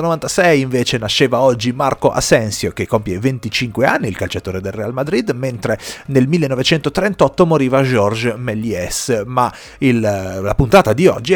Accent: native